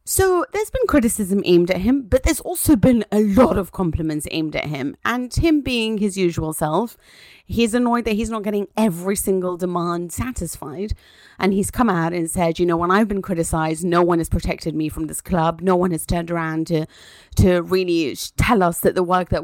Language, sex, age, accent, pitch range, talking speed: English, female, 30-49, British, 160-195 Hz, 210 wpm